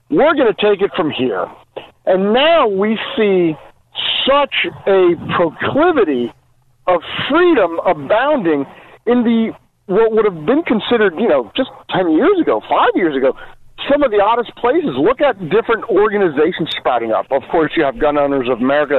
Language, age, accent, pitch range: English, 50-69, American, 165-255 Hz